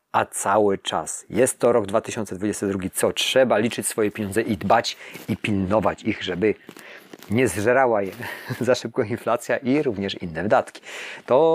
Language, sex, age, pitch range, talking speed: Polish, male, 40-59, 100-120 Hz, 150 wpm